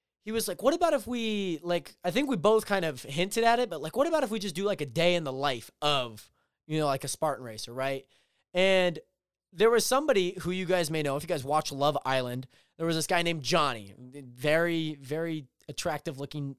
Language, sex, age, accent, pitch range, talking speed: English, male, 20-39, American, 135-180 Hz, 230 wpm